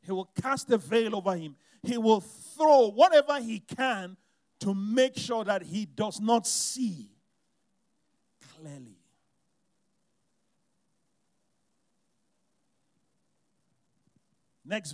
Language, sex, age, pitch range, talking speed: English, male, 50-69, 155-225 Hz, 90 wpm